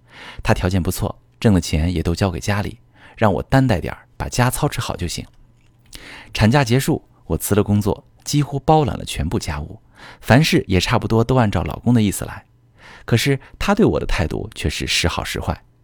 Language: Chinese